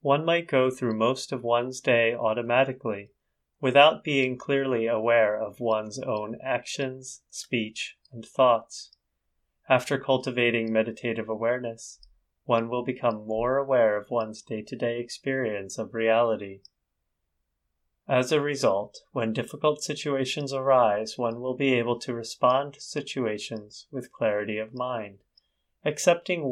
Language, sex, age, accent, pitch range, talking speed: English, male, 30-49, American, 105-130 Hz, 125 wpm